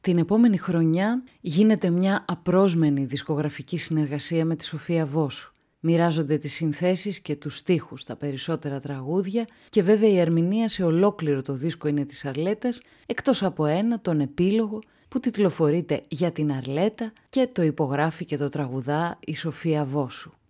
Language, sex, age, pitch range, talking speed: Greek, female, 30-49, 150-190 Hz, 150 wpm